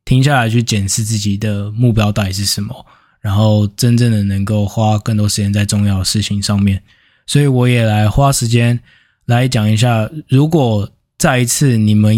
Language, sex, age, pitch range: Chinese, male, 20-39, 105-120 Hz